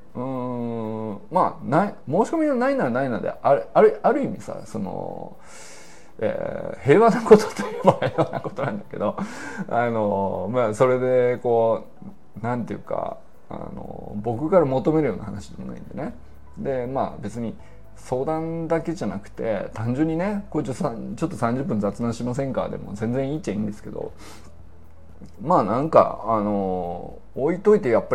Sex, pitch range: male, 100-140 Hz